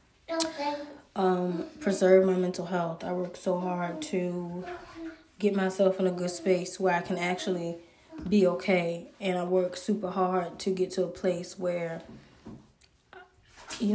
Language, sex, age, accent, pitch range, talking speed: English, female, 20-39, American, 185-220 Hz, 145 wpm